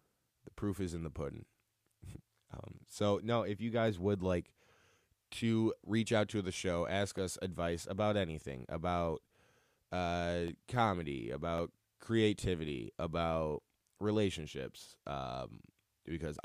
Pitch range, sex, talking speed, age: 85-105 Hz, male, 125 wpm, 20-39